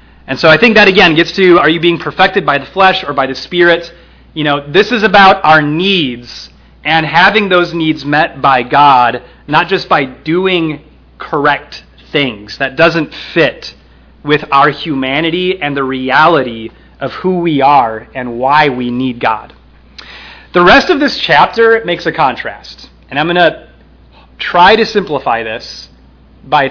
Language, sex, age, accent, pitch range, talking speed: English, male, 30-49, American, 120-165 Hz, 165 wpm